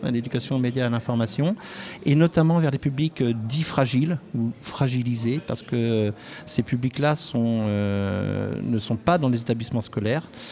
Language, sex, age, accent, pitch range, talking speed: French, male, 50-69, French, 110-135 Hz, 160 wpm